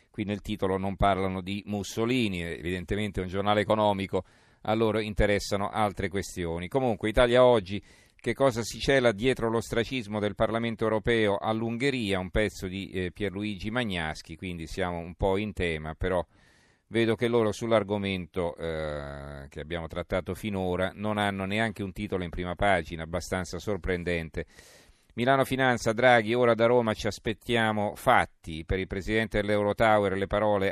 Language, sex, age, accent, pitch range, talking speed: Italian, male, 40-59, native, 95-115 Hz, 150 wpm